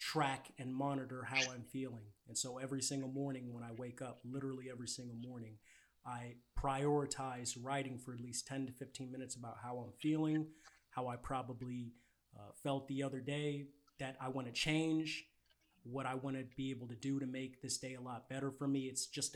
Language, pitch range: English, 125-140 Hz